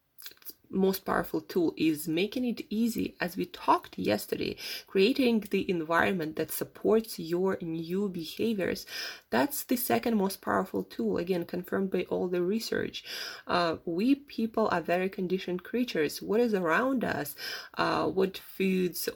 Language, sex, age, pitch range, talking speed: English, female, 20-39, 170-220 Hz, 140 wpm